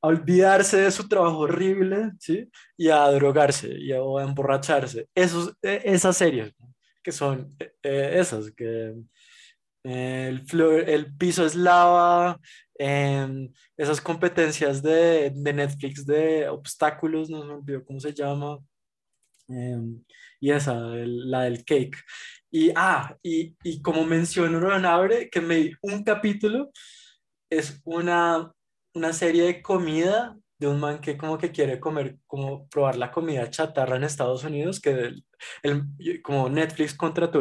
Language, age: Spanish, 20-39